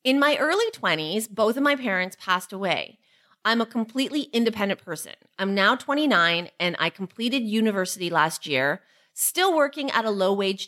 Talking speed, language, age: 165 wpm, English, 30-49